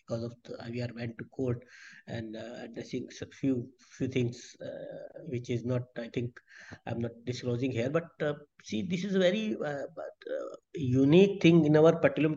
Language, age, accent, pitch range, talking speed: English, 50-69, Indian, 130-170 Hz, 175 wpm